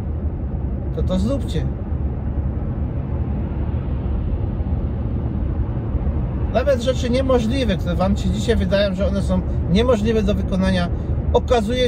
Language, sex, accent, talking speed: Polish, male, native, 85 wpm